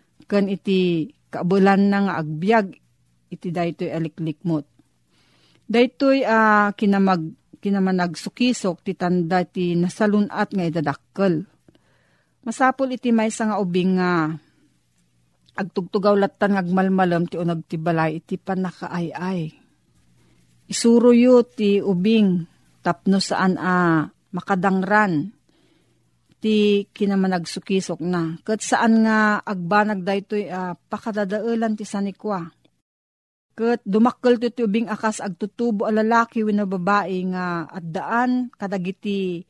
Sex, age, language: female, 40-59, Filipino